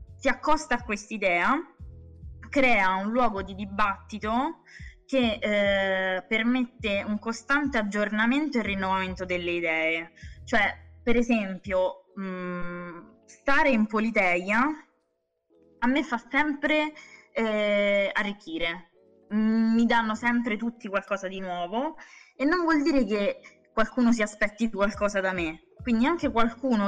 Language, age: Italian, 20-39